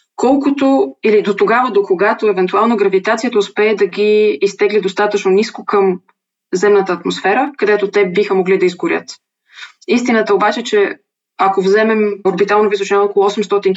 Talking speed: 140 wpm